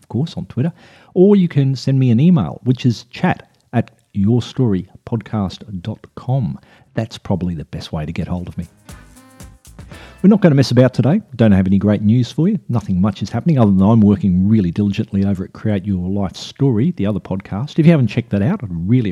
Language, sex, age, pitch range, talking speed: English, male, 50-69, 100-135 Hz, 215 wpm